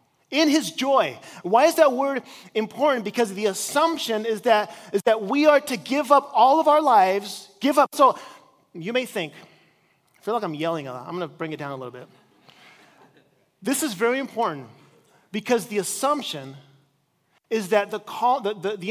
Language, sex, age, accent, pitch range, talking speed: English, male, 30-49, American, 200-270 Hz, 190 wpm